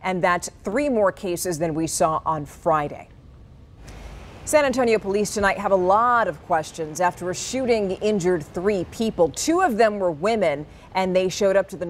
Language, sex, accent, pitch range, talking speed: English, female, American, 175-220 Hz, 180 wpm